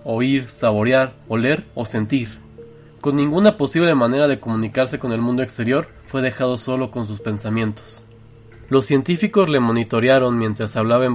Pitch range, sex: 115-135 Hz, male